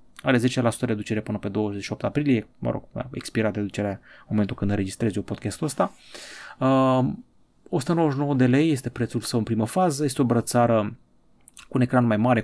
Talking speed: 185 wpm